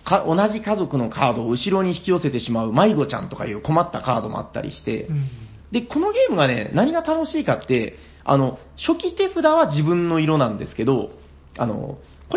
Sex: male